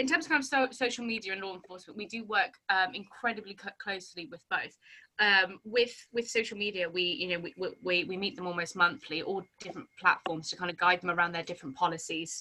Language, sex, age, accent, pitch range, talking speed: English, female, 20-39, British, 175-200 Hz, 225 wpm